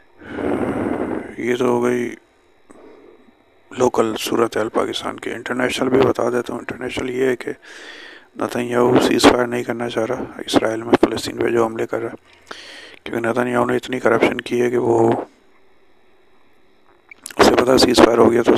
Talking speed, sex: 175 wpm, male